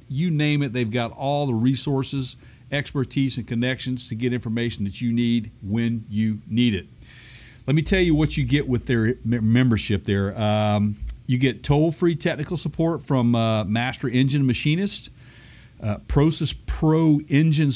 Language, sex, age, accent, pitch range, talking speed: English, male, 50-69, American, 120-145 Hz, 160 wpm